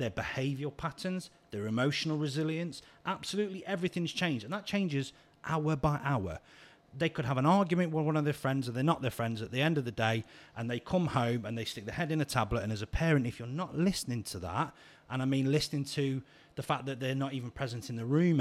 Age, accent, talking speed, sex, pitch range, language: 30-49, British, 240 wpm, male, 115-145 Hz, English